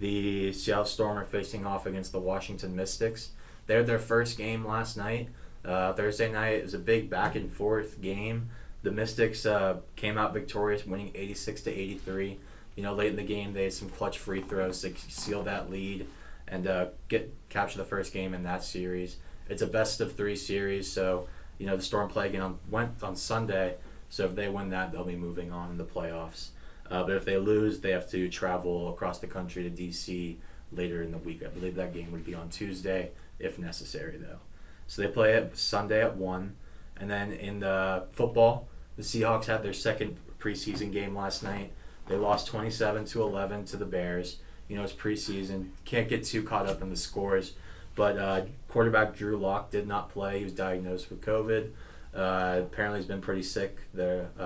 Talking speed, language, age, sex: 200 wpm, English, 20-39, male